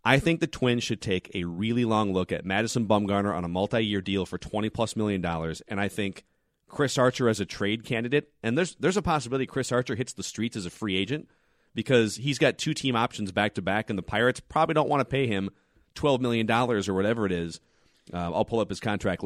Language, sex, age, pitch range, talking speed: English, male, 30-49, 100-130 Hz, 220 wpm